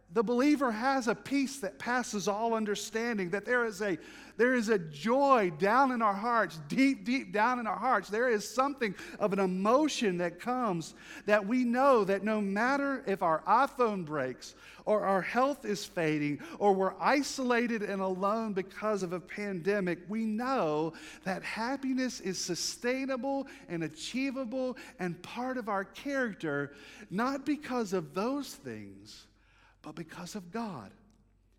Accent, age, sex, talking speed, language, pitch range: American, 50-69, male, 155 wpm, English, 160-245 Hz